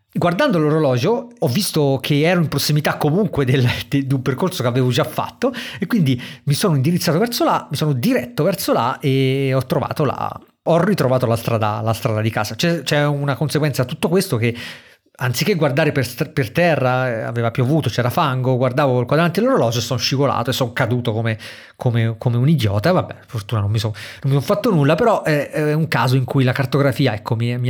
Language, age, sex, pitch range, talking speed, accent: Italian, 30-49, male, 120-150 Hz, 200 wpm, native